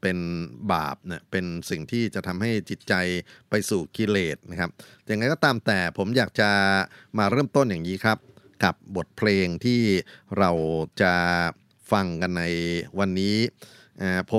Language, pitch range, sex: Thai, 90-110 Hz, male